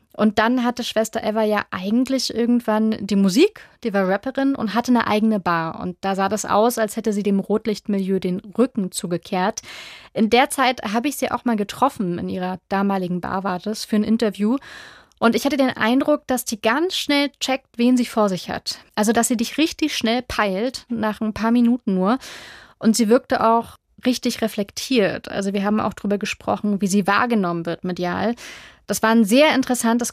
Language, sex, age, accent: German, female, 30-49, German